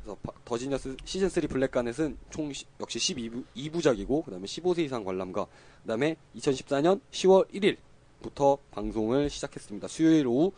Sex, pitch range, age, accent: male, 115-165 Hz, 20-39, native